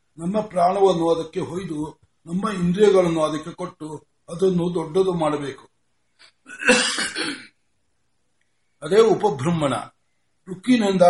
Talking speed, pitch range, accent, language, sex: 75 wpm, 145-185 Hz, native, Kannada, male